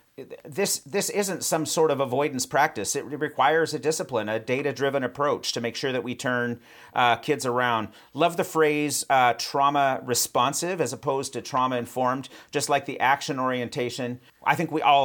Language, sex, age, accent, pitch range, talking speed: English, male, 40-59, American, 120-145 Hz, 180 wpm